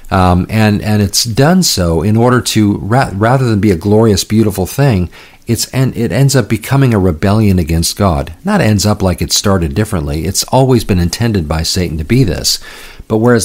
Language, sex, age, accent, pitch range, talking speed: English, male, 50-69, American, 85-110 Hz, 200 wpm